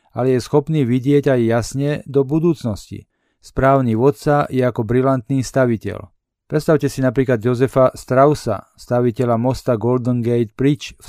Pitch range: 120-140 Hz